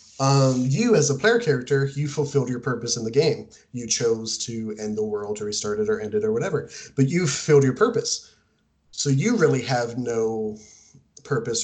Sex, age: male, 20-39